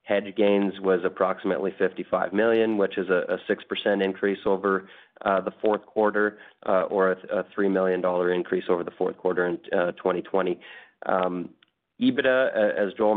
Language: English